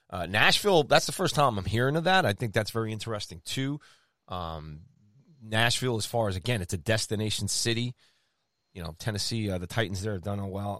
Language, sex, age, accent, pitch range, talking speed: English, male, 30-49, American, 90-115 Hz, 205 wpm